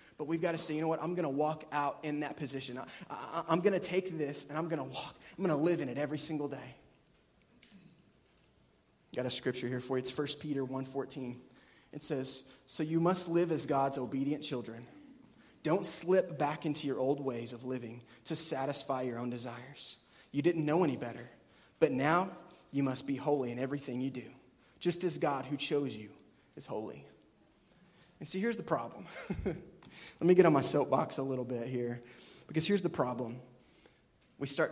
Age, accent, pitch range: 20-39, American, 130-160 Hz